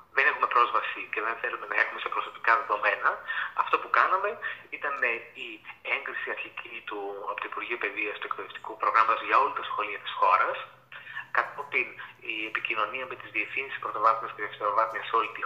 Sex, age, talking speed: male, 30-49, 175 wpm